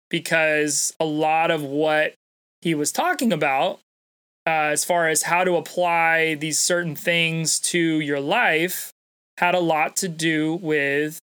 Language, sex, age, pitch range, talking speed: English, male, 20-39, 150-170 Hz, 150 wpm